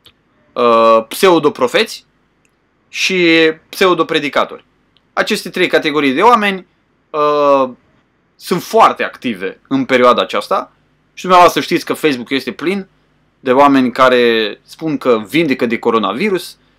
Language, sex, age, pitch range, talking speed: Romanian, male, 20-39, 130-185 Hz, 105 wpm